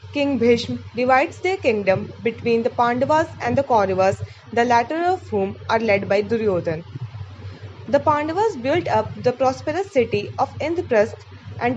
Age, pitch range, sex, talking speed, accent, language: 20-39, 185-280 Hz, female, 150 wpm, Indian, English